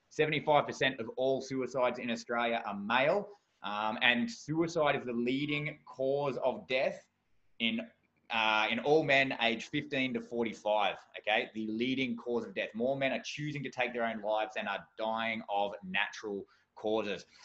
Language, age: English, 20-39